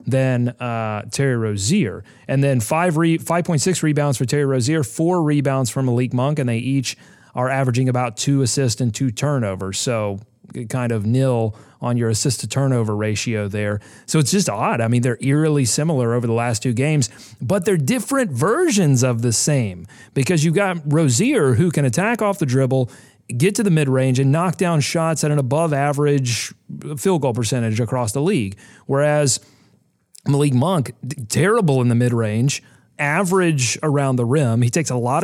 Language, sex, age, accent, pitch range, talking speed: English, male, 30-49, American, 120-150 Hz, 170 wpm